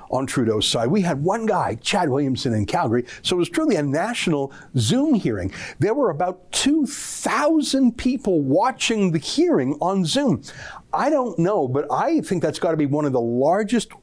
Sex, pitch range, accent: male, 140-190 Hz, American